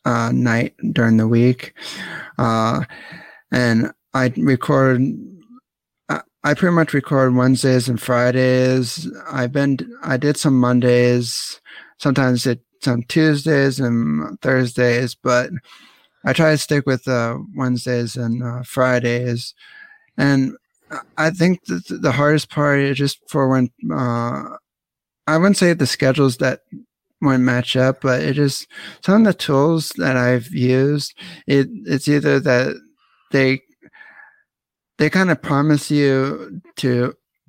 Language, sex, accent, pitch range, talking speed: English, male, American, 125-145 Hz, 130 wpm